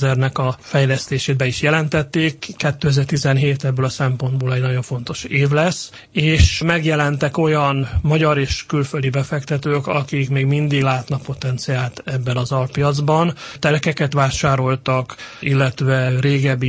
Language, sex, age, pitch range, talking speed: Hungarian, male, 30-49, 130-150 Hz, 120 wpm